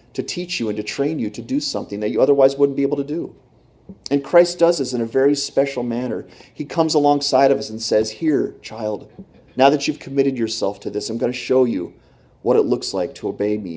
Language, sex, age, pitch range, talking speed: English, male, 30-49, 110-130 Hz, 240 wpm